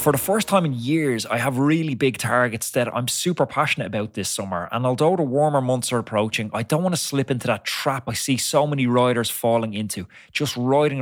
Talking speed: 230 wpm